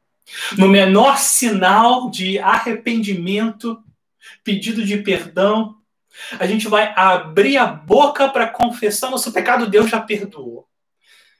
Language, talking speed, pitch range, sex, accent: Portuguese, 110 wpm, 155-210 Hz, male, Brazilian